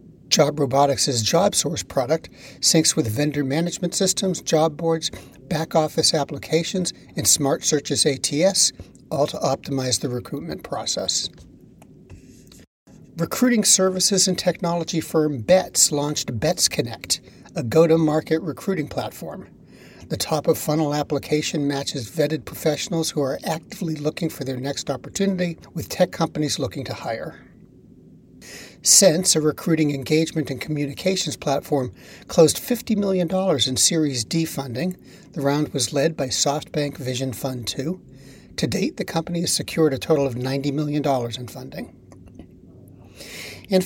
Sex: male